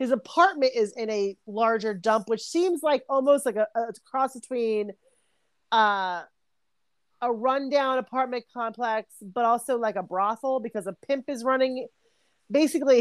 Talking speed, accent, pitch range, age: 150 wpm, American, 205-265 Hz, 30-49